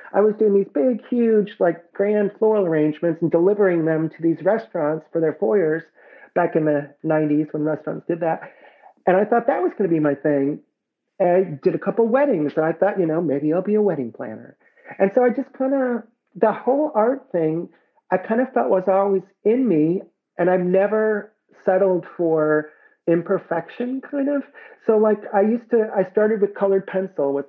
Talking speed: 195 wpm